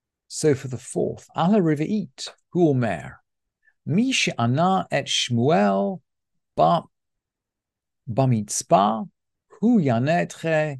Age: 50-69